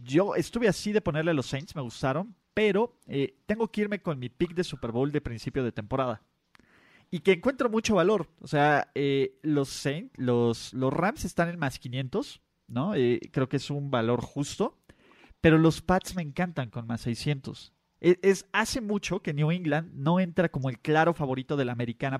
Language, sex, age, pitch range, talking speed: Spanish, male, 30-49, 130-180 Hz, 190 wpm